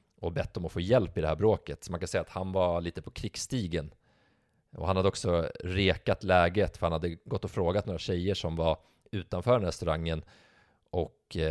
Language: Swedish